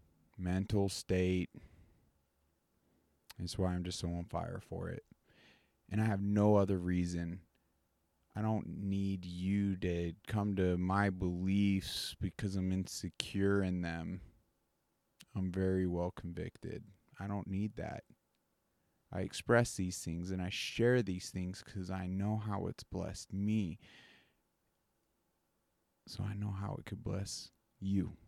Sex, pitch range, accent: male, 90-110 Hz, American